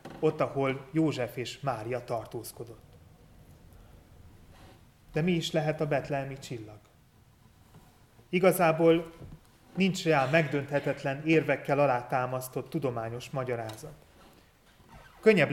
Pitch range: 120-155 Hz